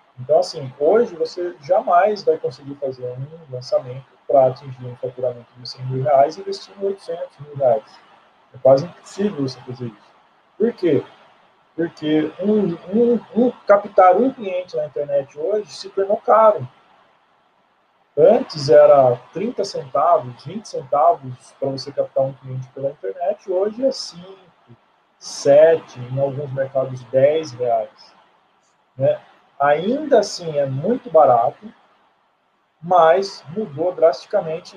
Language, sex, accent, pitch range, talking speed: Portuguese, male, Brazilian, 135-185 Hz, 130 wpm